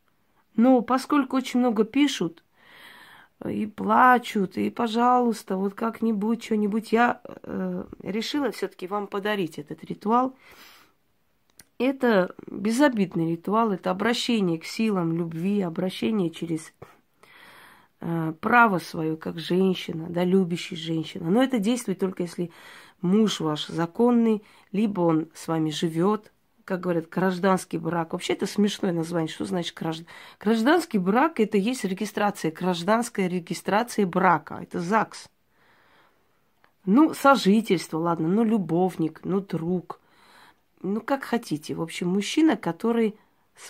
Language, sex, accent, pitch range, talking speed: Russian, female, native, 170-225 Hz, 120 wpm